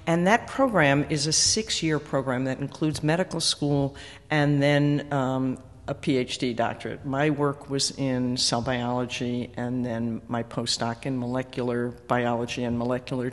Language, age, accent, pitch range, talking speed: English, 50-69, American, 120-145 Hz, 145 wpm